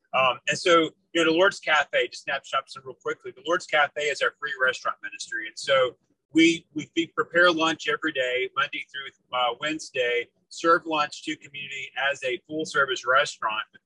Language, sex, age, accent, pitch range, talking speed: English, male, 30-49, American, 135-200 Hz, 180 wpm